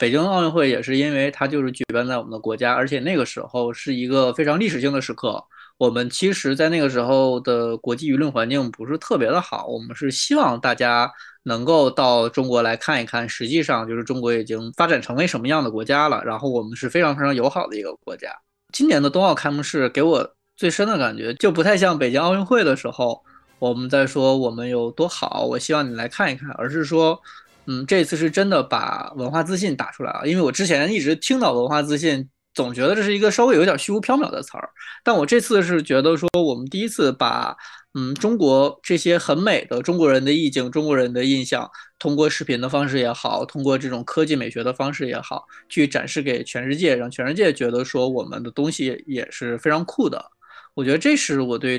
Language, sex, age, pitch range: Chinese, male, 20-39, 125-160 Hz